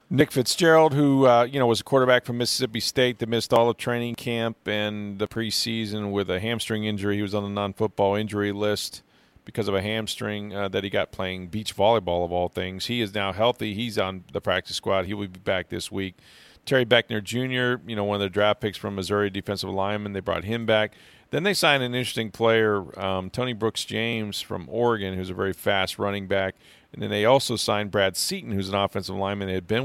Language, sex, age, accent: English, male, 40-59, American